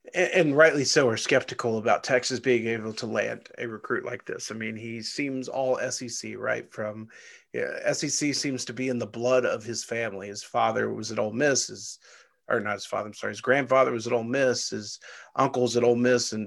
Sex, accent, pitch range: male, American, 120-145 Hz